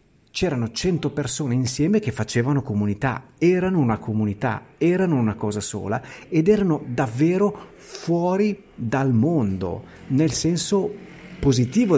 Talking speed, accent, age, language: 115 wpm, native, 50-69, Italian